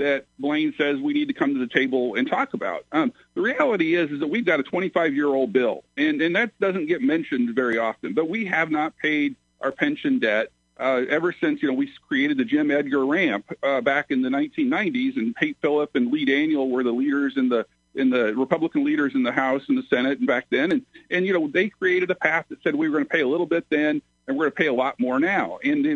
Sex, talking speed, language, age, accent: male, 250 wpm, English, 50-69, American